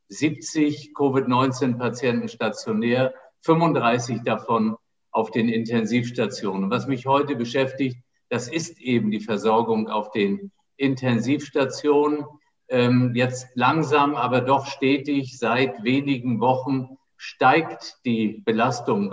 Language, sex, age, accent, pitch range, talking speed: German, male, 50-69, German, 115-135 Hz, 95 wpm